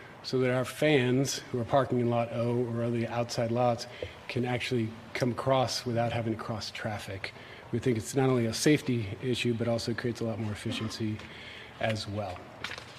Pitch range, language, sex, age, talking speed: 115-130 Hz, English, male, 40-59, 185 wpm